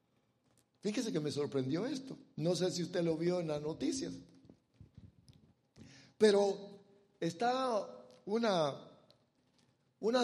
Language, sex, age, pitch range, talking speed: English, male, 60-79, 160-220 Hz, 105 wpm